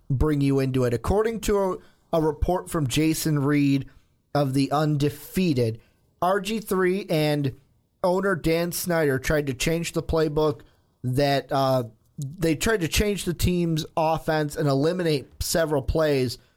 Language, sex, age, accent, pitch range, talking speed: English, male, 30-49, American, 135-170 Hz, 140 wpm